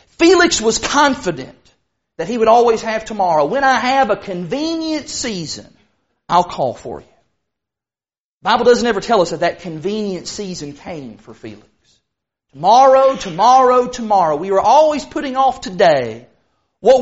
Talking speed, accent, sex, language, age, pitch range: 150 wpm, American, male, English, 40-59, 190-285 Hz